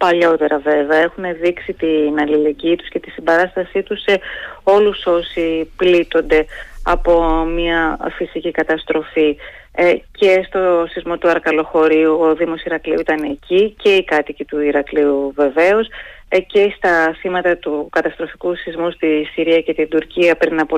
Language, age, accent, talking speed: Greek, 30-49, native, 140 wpm